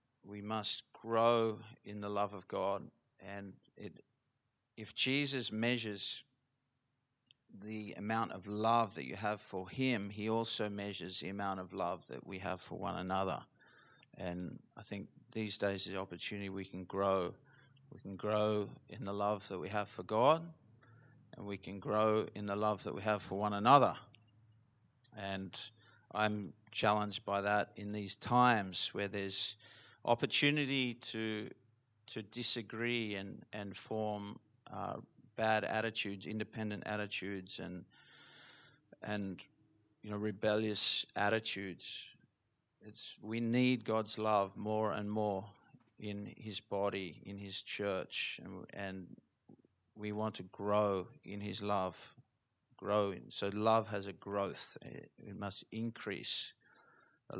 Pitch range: 100-115 Hz